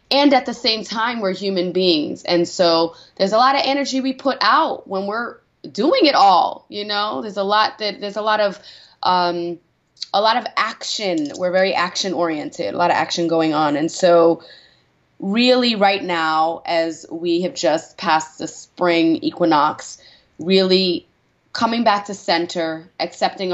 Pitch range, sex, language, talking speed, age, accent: 170-210 Hz, female, English, 170 wpm, 20-39, American